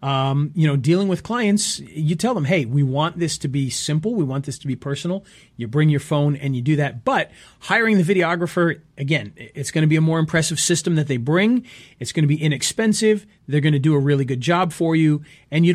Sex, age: male, 40-59